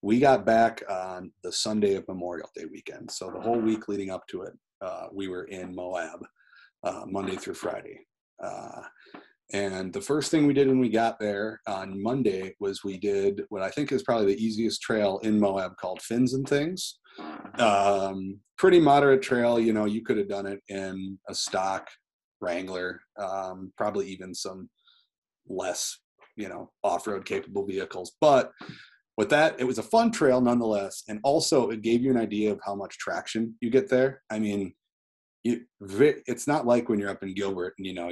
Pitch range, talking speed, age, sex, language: 95-115 Hz, 185 wpm, 30-49, male, English